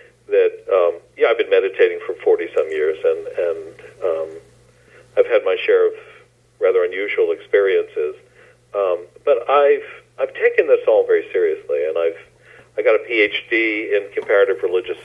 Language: English